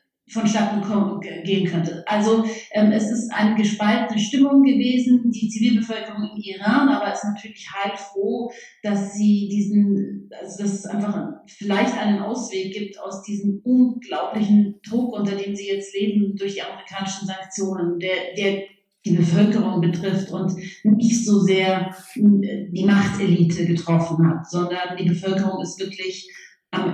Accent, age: German, 40-59